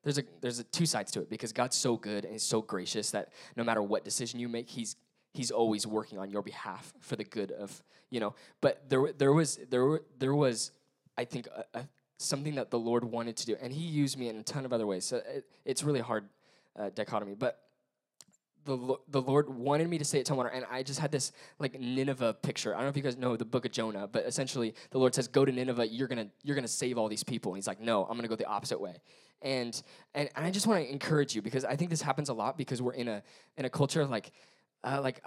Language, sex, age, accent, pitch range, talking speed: English, male, 10-29, American, 115-145 Hz, 265 wpm